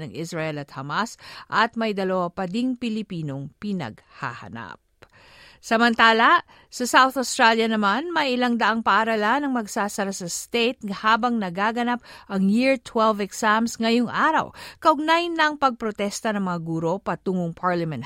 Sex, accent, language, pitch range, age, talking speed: female, native, Filipino, 180-235 Hz, 50-69, 135 wpm